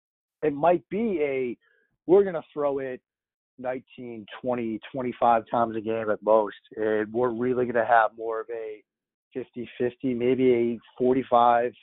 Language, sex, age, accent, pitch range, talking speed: English, male, 30-49, American, 110-130 Hz, 155 wpm